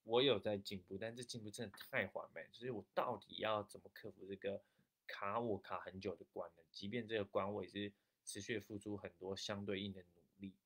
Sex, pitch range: male, 95-105 Hz